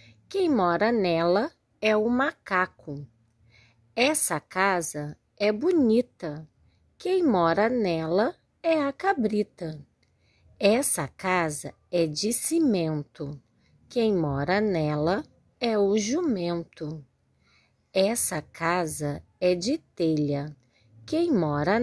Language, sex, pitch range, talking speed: Portuguese, female, 150-225 Hz, 95 wpm